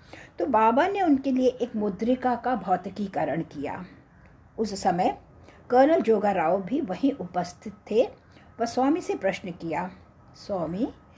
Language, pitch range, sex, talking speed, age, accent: English, 195-255 Hz, female, 130 wpm, 60-79, Indian